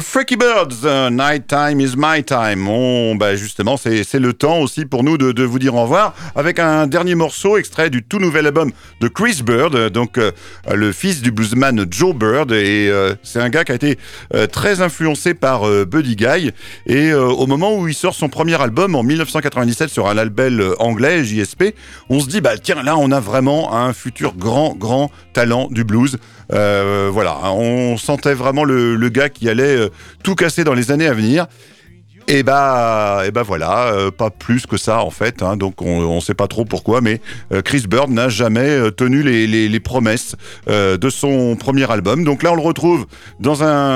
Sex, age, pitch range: male, 50-69, 110-145 Hz